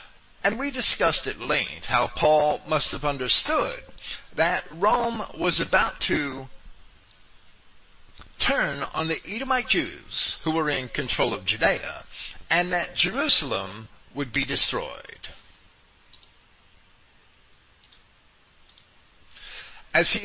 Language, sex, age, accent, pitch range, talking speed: English, male, 50-69, American, 115-195 Hz, 100 wpm